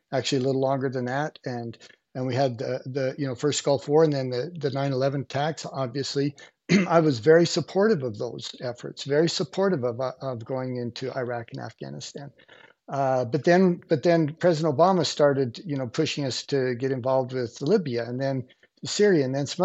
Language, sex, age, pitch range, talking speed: English, male, 50-69, 135-175 Hz, 195 wpm